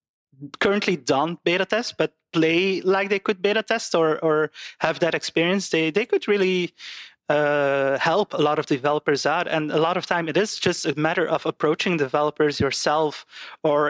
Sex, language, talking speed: male, English, 180 wpm